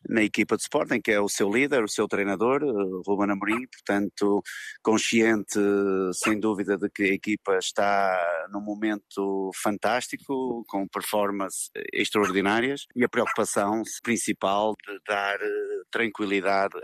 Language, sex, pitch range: Portuguese, male, 100-120 Hz